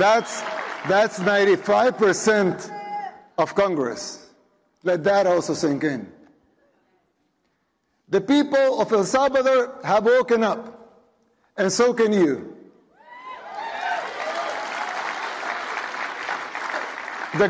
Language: English